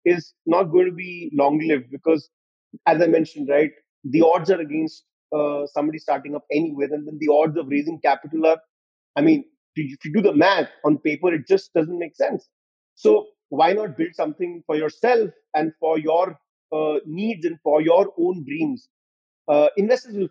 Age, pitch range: 30-49, 150-180 Hz